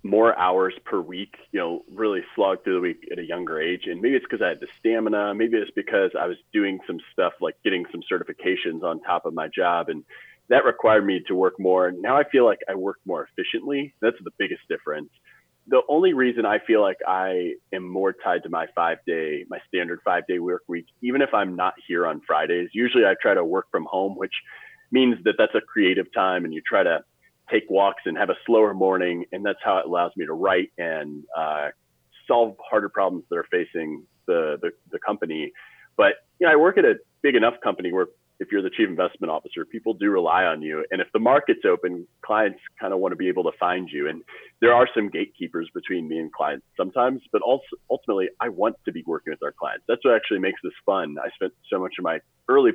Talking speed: 230 wpm